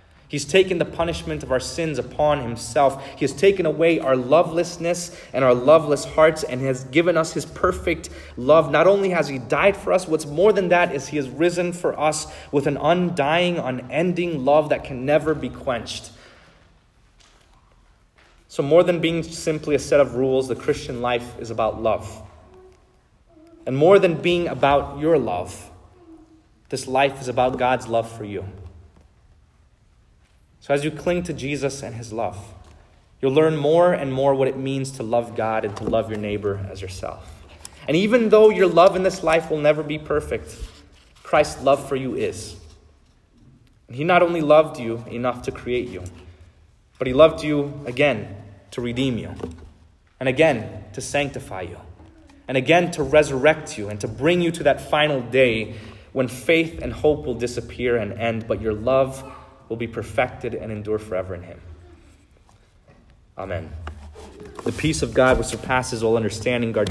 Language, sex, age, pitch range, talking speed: English, male, 30-49, 105-155 Hz, 170 wpm